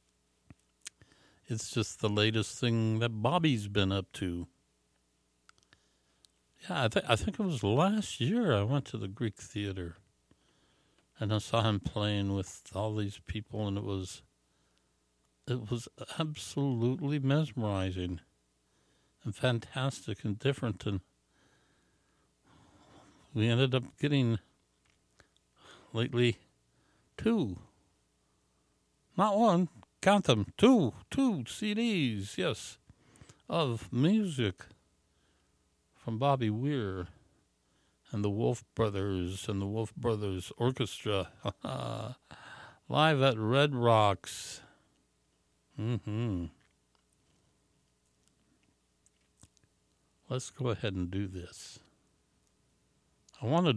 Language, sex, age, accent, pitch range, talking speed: English, male, 60-79, American, 85-125 Hz, 95 wpm